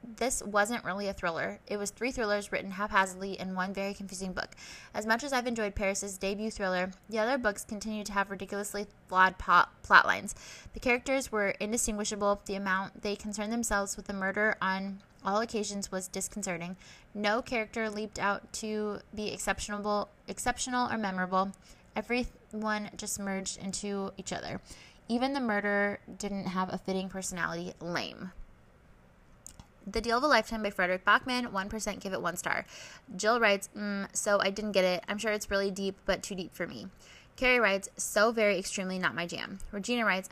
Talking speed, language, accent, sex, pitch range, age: 175 wpm, English, American, female, 190-215 Hz, 20-39